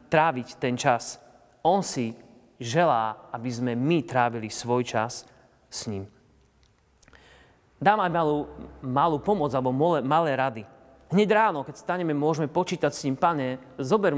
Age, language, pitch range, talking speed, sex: 30-49, Slovak, 135-180 Hz, 140 wpm, male